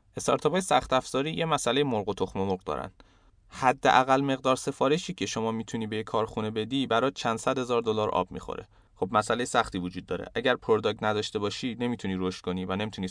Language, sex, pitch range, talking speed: Persian, male, 95-120 Hz, 185 wpm